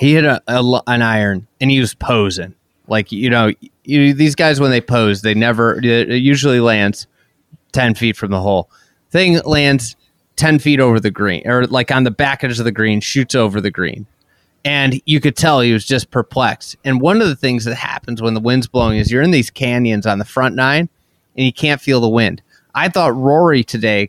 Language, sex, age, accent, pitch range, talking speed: English, male, 30-49, American, 115-140 Hz, 205 wpm